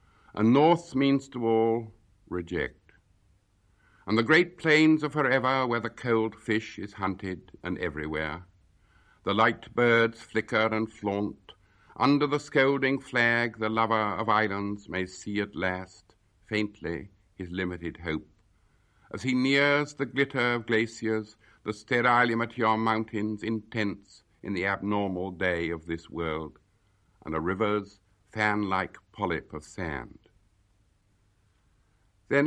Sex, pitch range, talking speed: male, 95-120 Hz, 130 wpm